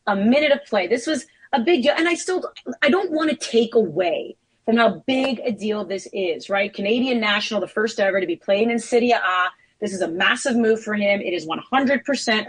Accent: American